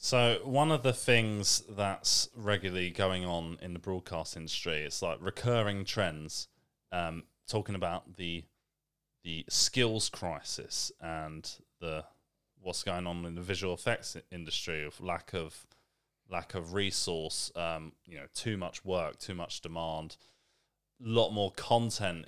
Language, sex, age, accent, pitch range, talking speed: English, male, 20-39, British, 85-105 Hz, 145 wpm